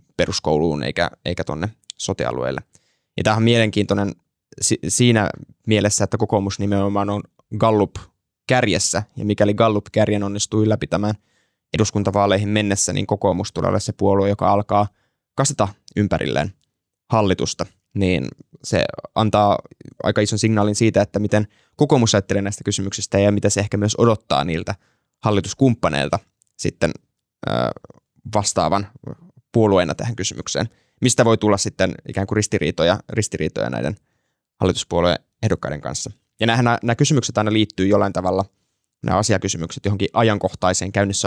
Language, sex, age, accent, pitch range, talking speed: Finnish, male, 10-29, native, 100-110 Hz, 120 wpm